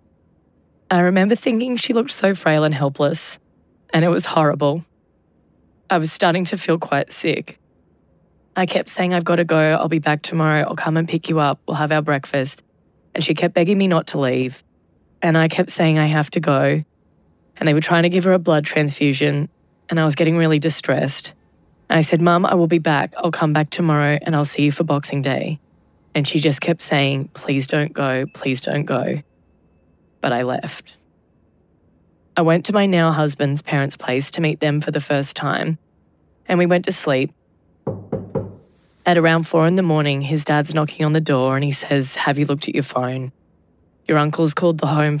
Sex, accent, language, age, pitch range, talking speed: female, Australian, English, 20-39, 135-165 Hz, 200 wpm